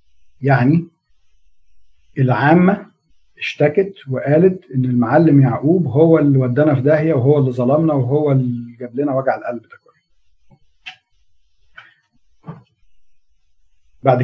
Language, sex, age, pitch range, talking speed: Arabic, male, 40-59, 95-160 Hz, 95 wpm